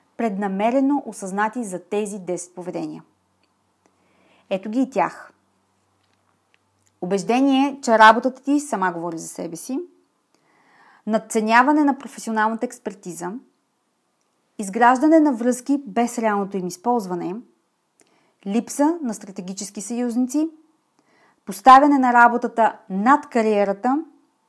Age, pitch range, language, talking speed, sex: 30-49, 195-265 Hz, Bulgarian, 95 wpm, female